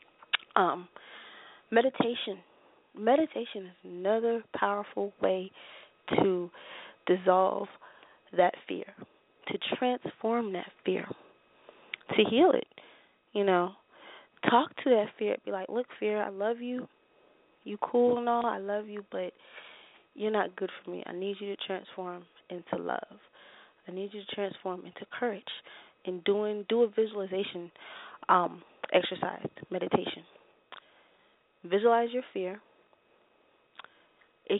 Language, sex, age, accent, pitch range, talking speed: English, female, 20-39, American, 190-230 Hz, 120 wpm